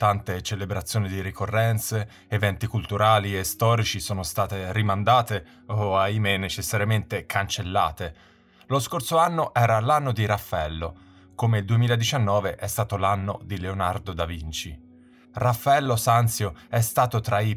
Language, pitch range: Italian, 95-115 Hz